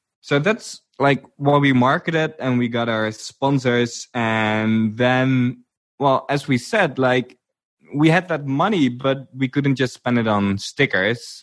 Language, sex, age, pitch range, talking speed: English, male, 20-39, 105-145 Hz, 160 wpm